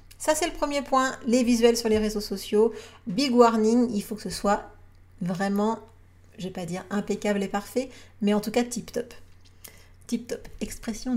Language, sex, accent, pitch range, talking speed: French, female, French, 190-245 Hz, 185 wpm